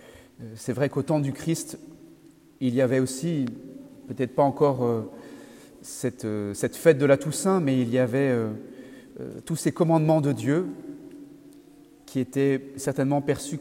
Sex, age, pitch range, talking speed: male, 40-59, 130-155 Hz, 155 wpm